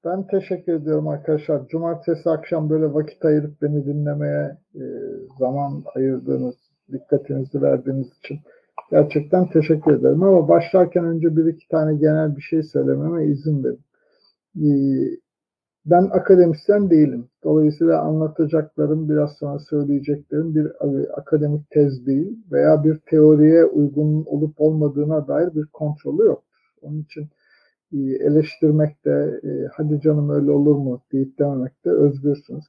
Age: 50-69